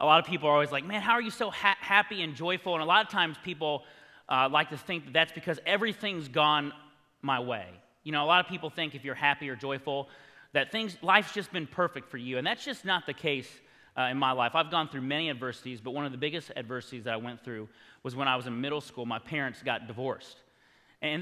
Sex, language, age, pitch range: male, English, 30-49, 130-165 Hz